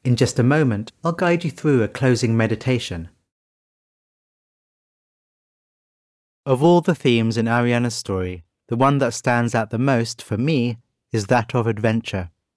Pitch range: 105-135 Hz